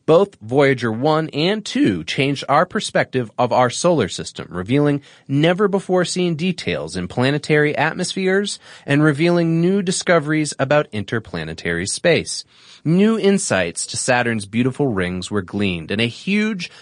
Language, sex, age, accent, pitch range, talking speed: English, male, 30-49, American, 120-170 Hz, 130 wpm